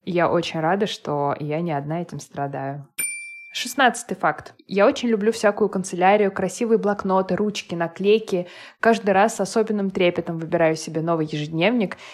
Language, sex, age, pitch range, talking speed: Russian, female, 20-39, 170-215 Hz, 145 wpm